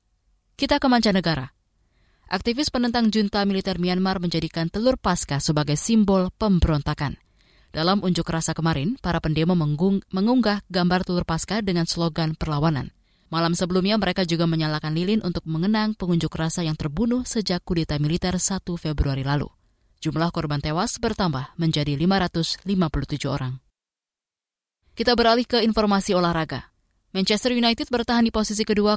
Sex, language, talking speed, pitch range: female, Indonesian, 130 wpm, 160-205 Hz